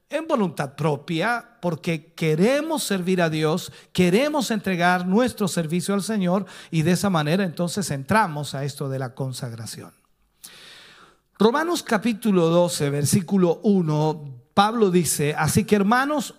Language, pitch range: Spanish, 150-220 Hz